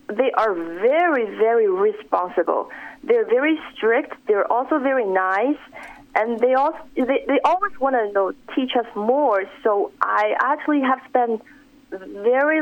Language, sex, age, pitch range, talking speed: English, female, 30-49, 220-285 Hz, 145 wpm